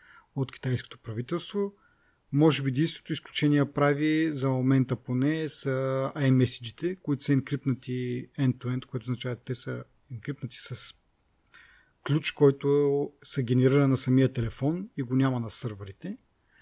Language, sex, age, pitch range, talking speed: Bulgarian, male, 30-49, 120-145 Hz, 125 wpm